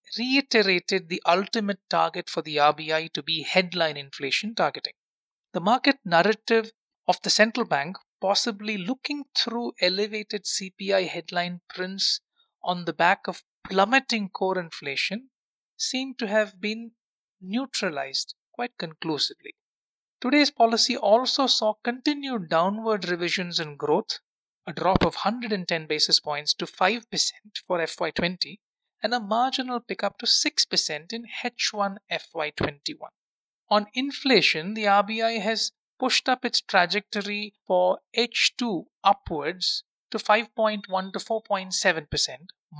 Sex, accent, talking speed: male, Indian, 120 wpm